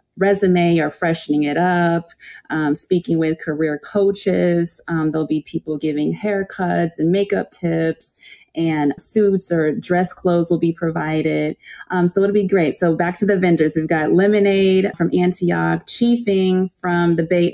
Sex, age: female, 30-49